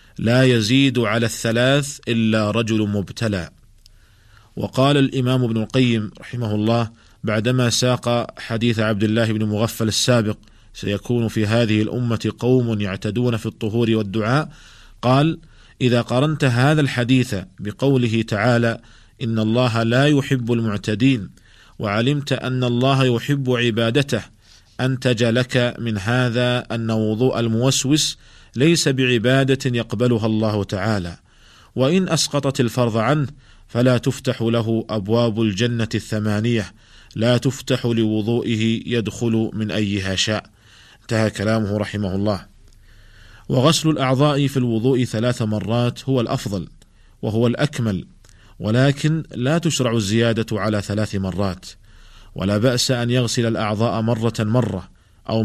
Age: 40-59